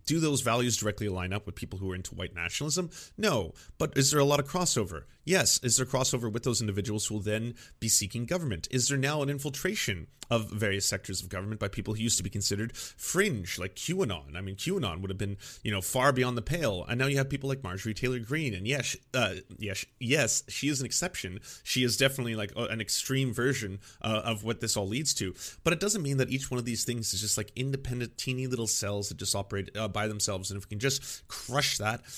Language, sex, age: English, male, 30-49